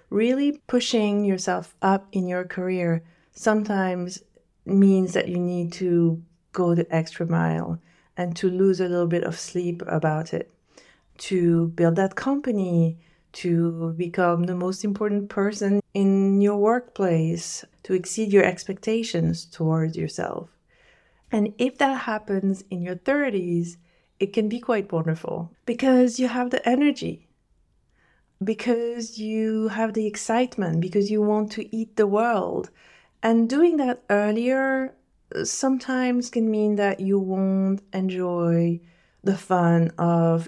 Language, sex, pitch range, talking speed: English, female, 170-215 Hz, 130 wpm